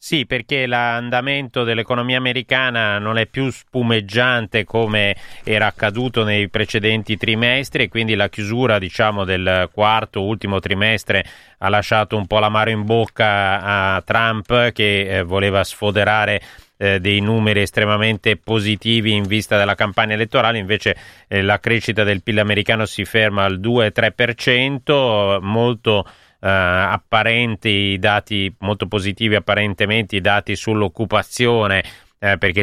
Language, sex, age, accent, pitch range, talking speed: Italian, male, 30-49, native, 100-115 Hz, 125 wpm